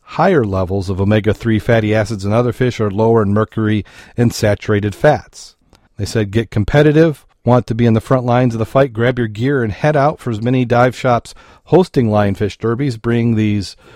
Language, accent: English, American